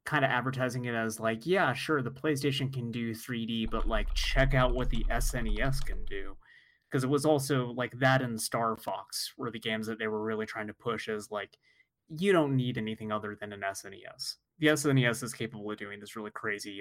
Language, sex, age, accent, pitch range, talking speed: English, male, 20-39, American, 115-150 Hz, 215 wpm